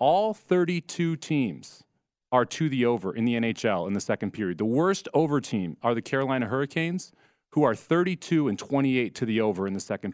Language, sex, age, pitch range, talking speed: English, male, 40-59, 115-155 Hz, 195 wpm